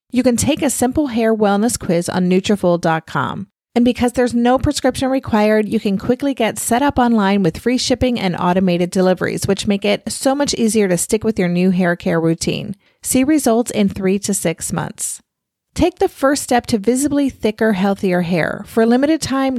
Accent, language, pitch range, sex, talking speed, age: American, English, 195-250 Hz, female, 195 wpm, 30-49